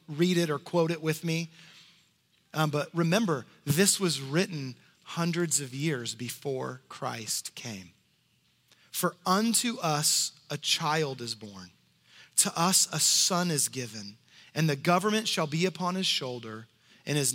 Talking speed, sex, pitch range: 145 wpm, male, 130-180 Hz